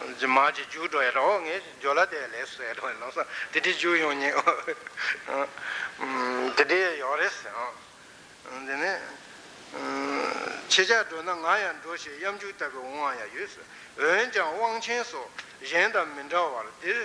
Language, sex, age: Italian, male, 60-79